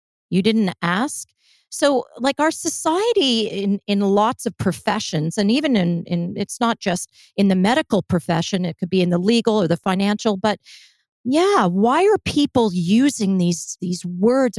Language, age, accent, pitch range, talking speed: English, 40-59, American, 175-235 Hz, 170 wpm